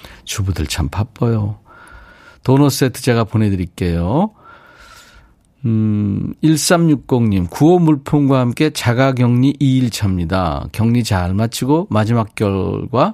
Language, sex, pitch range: Korean, male, 100-150 Hz